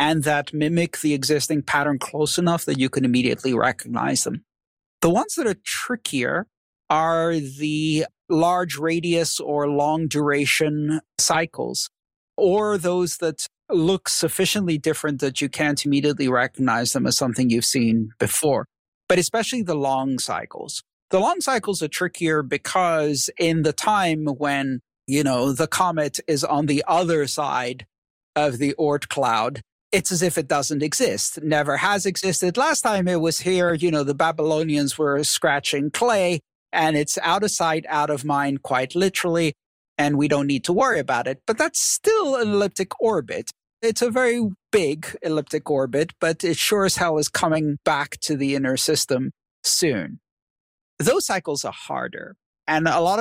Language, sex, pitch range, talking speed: English, male, 145-175 Hz, 160 wpm